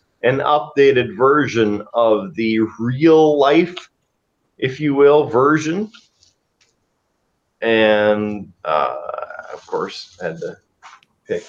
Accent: American